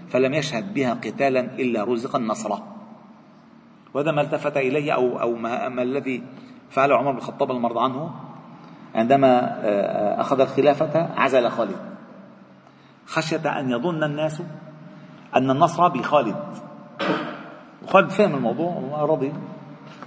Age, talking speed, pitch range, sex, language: 40-59, 110 wpm, 140-185 Hz, male, Arabic